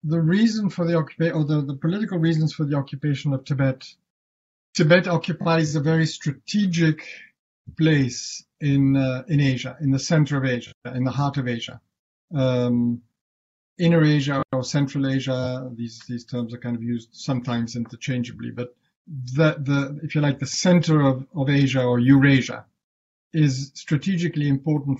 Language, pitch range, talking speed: English, 120-150 Hz, 160 wpm